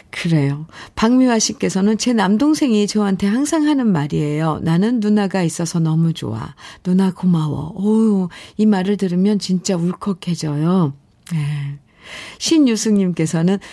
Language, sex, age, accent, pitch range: Korean, female, 50-69, native, 155-210 Hz